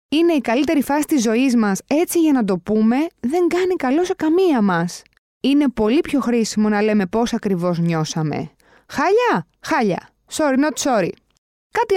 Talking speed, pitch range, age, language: 165 wpm, 205-310 Hz, 20-39, Greek